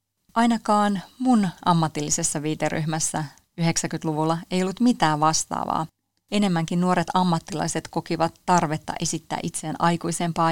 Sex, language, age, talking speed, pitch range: female, Finnish, 30-49, 95 wpm, 155-190 Hz